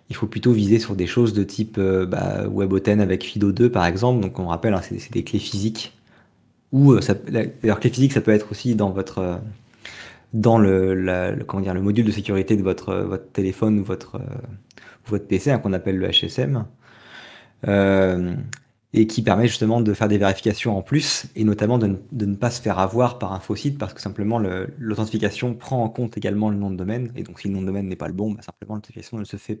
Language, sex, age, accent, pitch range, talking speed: French, male, 20-39, French, 95-115 Hz, 230 wpm